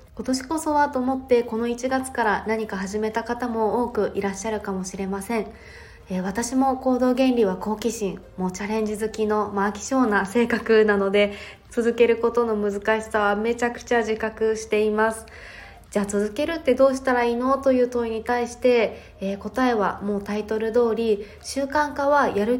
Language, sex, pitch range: Japanese, female, 200-245 Hz